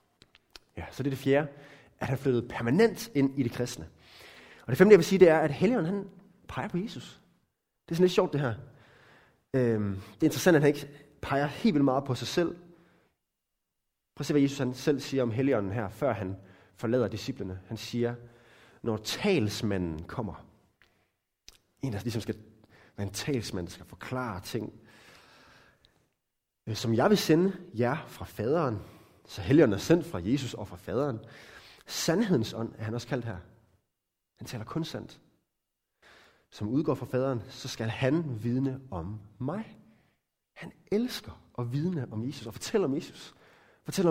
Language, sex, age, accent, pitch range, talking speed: Danish, male, 30-49, native, 110-155 Hz, 170 wpm